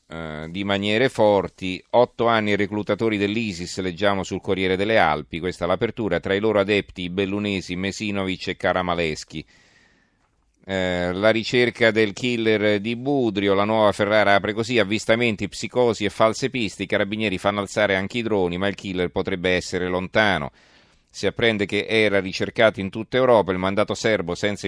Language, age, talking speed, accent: Italian, 40-59, 165 wpm, native